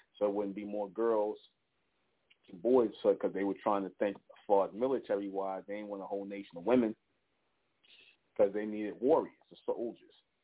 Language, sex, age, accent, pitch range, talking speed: English, male, 30-49, American, 100-115 Hz, 165 wpm